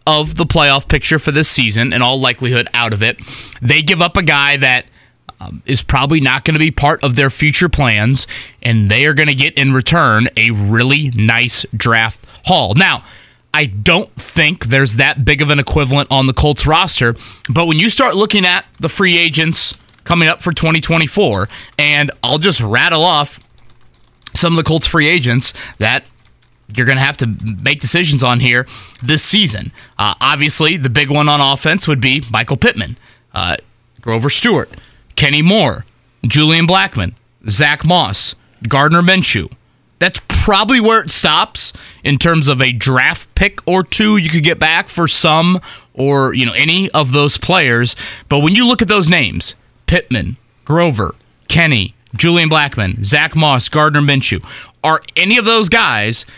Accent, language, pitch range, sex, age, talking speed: American, English, 120-160 Hz, male, 20-39, 175 wpm